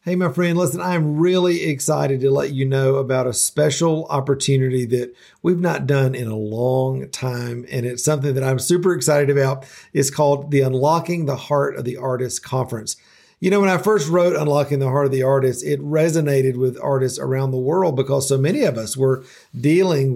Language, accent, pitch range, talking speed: English, American, 125-155 Hz, 200 wpm